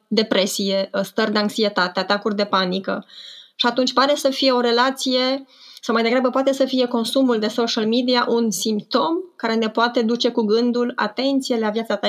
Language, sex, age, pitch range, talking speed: Romanian, female, 20-39, 210-250 Hz, 180 wpm